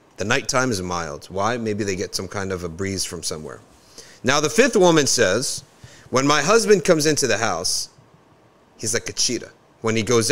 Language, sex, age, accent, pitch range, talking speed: English, male, 30-49, American, 110-150 Hz, 200 wpm